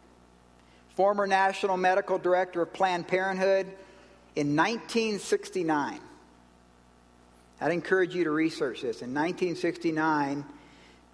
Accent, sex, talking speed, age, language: American, male, 90 wpm, 50-69, English